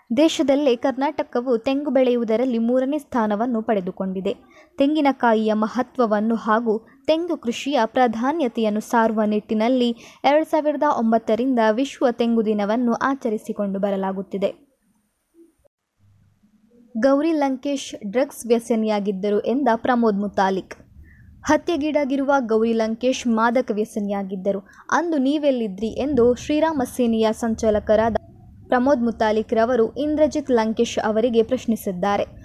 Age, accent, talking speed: 20-39, native, 85 wpm